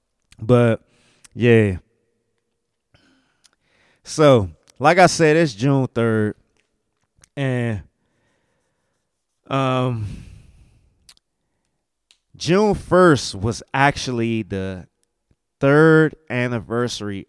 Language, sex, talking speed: English, male, 60 wpm